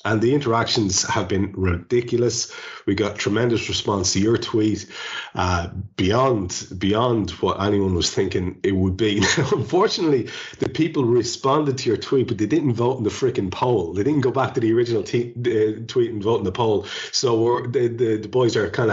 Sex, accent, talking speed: male, Irish, 195 wpm